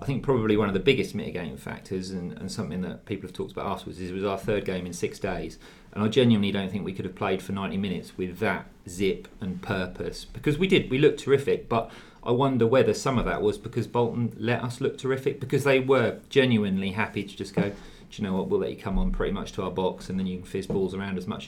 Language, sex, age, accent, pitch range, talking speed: English, male, 40-59, British, 95-120 Hz, 265 wpm